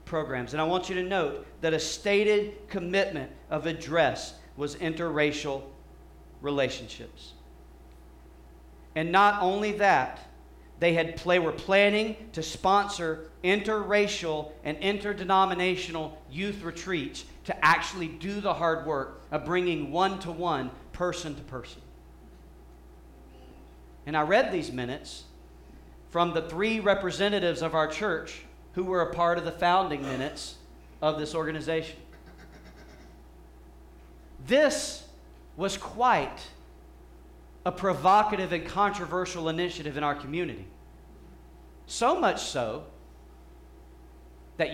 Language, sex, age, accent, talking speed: English, male, 40-59, American, 105 wpm